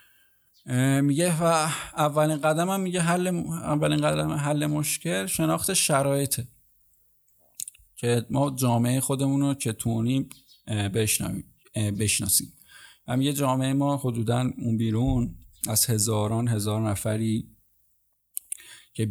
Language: Persian